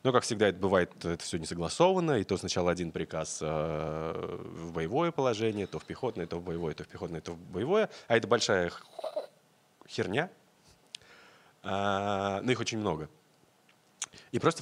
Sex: male